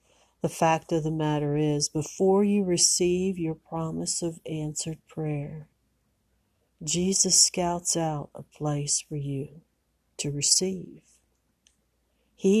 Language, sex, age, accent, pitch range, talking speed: English, female, 60-79, American, 145-175 Hz, 115 wpm